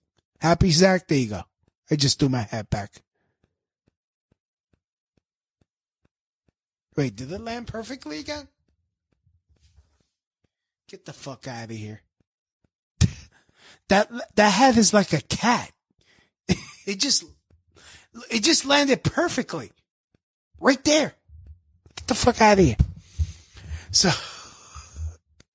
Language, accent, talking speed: English, American, 105 wpm